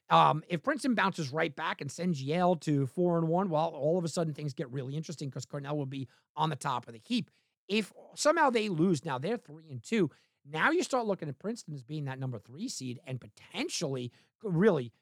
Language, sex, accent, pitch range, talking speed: English, male, American, 135-180 Hz, 225 wpm